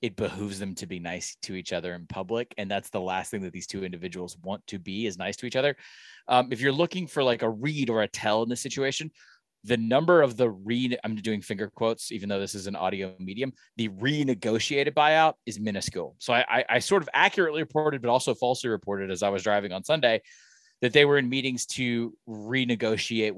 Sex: male